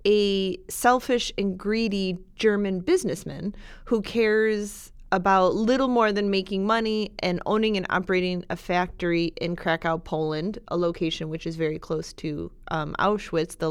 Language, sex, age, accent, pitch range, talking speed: English, female, 30-49, American, 180-225 Hz, 145 wpm